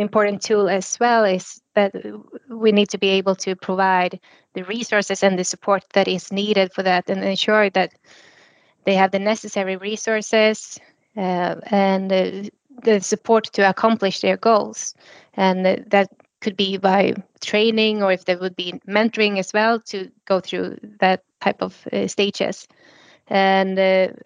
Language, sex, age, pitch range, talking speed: English, female, 20-39, 190-215 Hz, 155 wpm